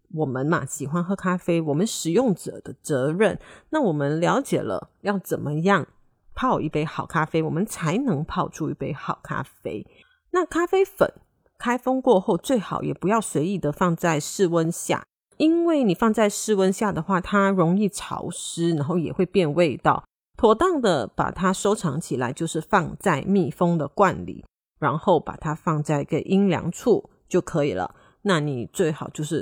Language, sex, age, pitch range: Chinese, female, 30-49, 155-210 Hz